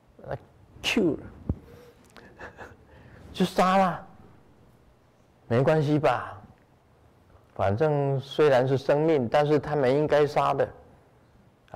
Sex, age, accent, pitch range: male, 50-69, native, 100-130 Hz